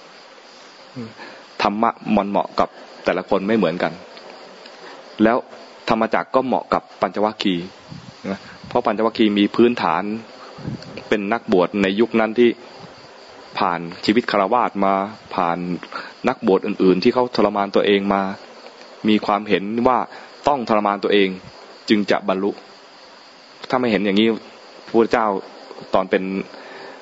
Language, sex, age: English, male, 20-39